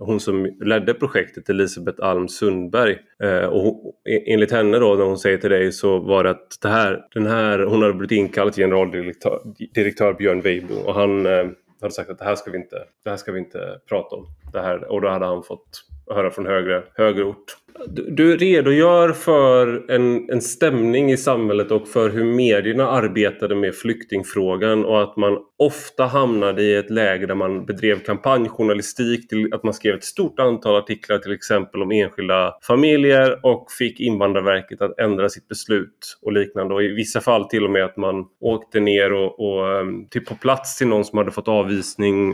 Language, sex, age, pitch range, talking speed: Swedish, male, 20-39, 100-130 Hz, 190 wpm